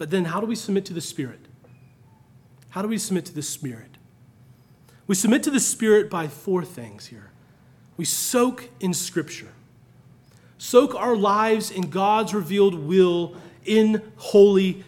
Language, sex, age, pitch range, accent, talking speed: English, male, 30-49, 175-225 Hz, American, 155 wpm